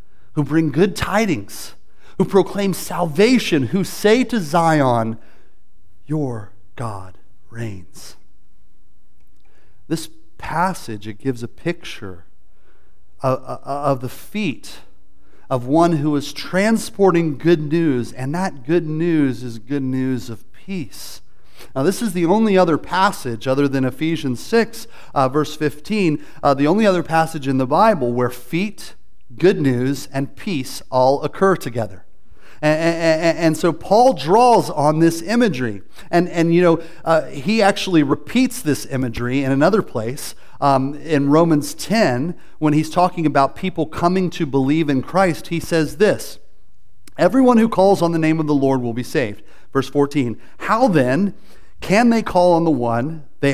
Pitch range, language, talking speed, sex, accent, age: 125-175 Hz, English, 145 wpm, male, American, 40-59